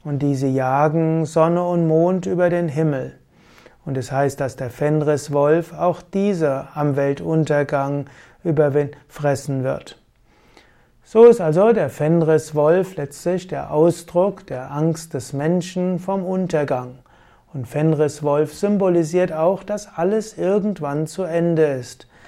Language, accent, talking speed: German, German, 125 wpm